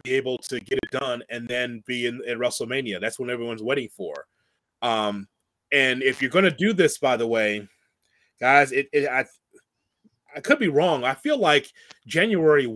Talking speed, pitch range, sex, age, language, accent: 190 wpm, 125-155 Hz, male, 30-49, English, American